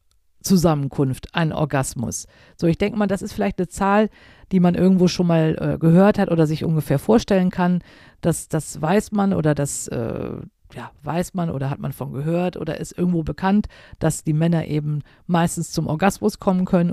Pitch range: 150-210 Hz